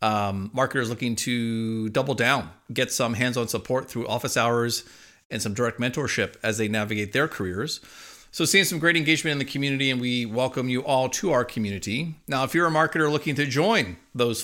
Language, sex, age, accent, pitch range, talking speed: English, male, 40-59, American, 115-145 Hz, 195 wpm